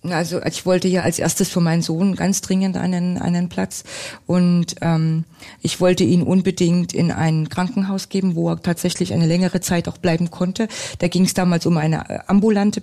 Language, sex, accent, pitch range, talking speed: German, female, German, 175-195 Hz, 185 wpm